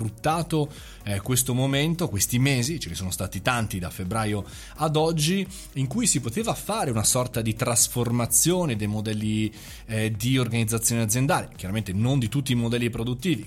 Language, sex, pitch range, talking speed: Italian, male, 105-140 Hz, 155 wpm